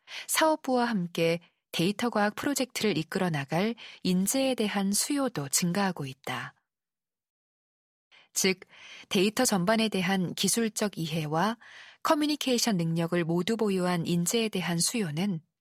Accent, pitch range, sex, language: native, 170-230 Hz, female, Korean